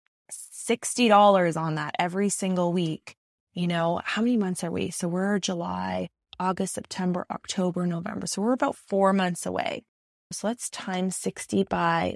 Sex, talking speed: female, 150 wpm